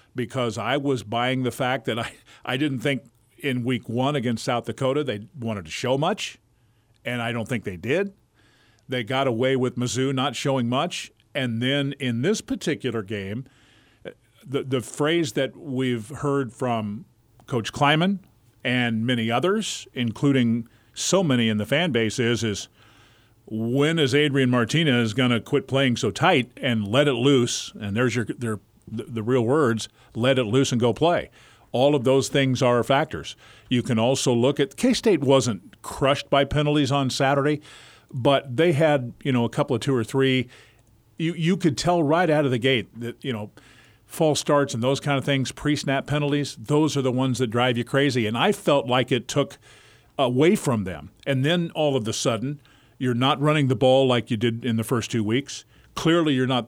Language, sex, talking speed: English, male, 190 wpm